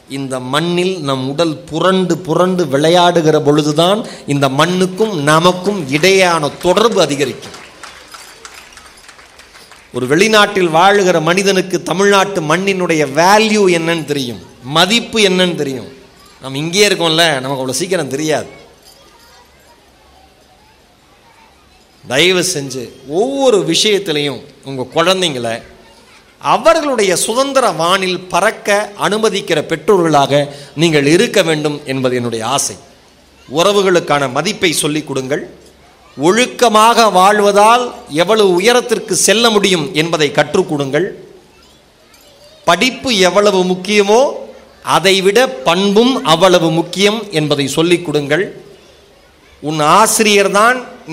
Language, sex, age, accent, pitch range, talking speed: Tamil, male, 30-49, native, 150-200 Hz, 85 wpm